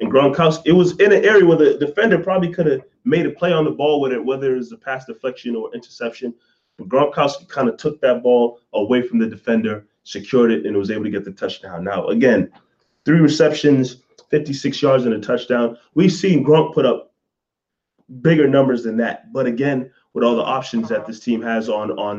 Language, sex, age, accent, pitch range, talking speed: English, male, 30-49, American, 115-155 Hz, 210 wpm